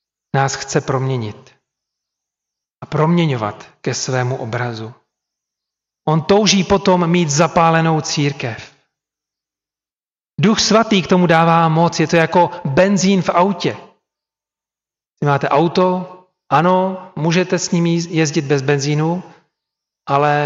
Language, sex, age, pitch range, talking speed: Czech, male, 40-59, 140-170 Hz, 105 wpm